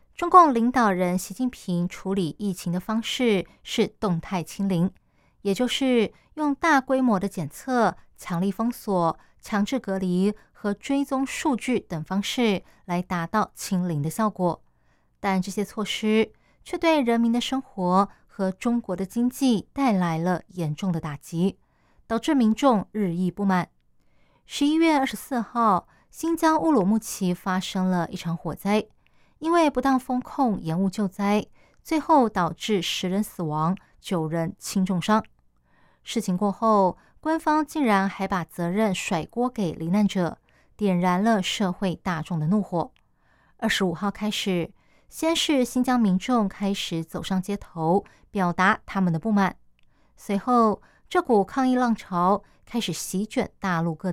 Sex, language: female, Chinese